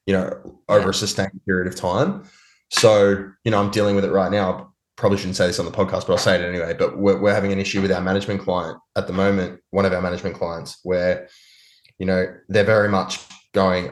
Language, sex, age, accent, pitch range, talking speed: English, male, 10-29, Australian, 95-110 Hz, 235 wpm